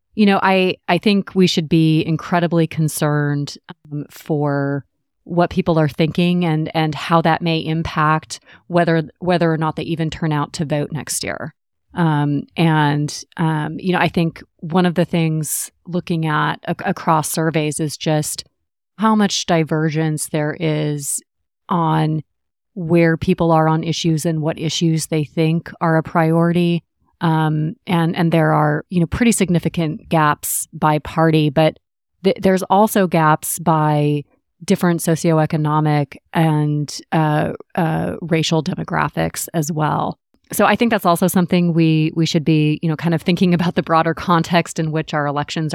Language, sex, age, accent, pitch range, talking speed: English, female, 30-49, American, 155-175 Hz, 160 wpm